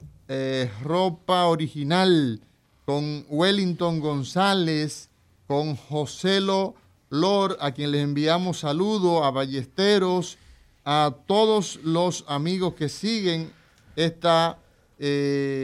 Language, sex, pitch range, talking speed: Spanish, male, 135-175 Hz, 95 wpm